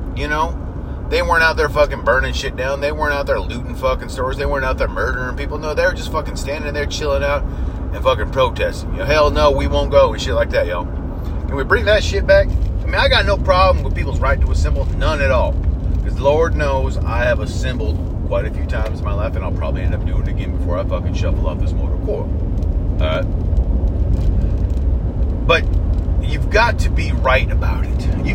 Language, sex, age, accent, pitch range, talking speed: English, male, 30-49, American, 80-90 Hz, 225 wpm